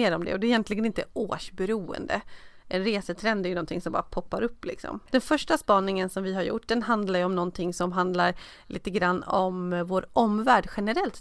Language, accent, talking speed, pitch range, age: Swedish, native, 195 wpm, 180-220 Hz, 30-49